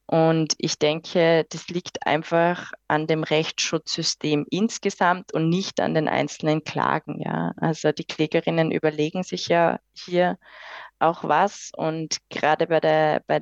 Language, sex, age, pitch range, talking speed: German, female, 20-39, 160-200 Hz, 130 wpm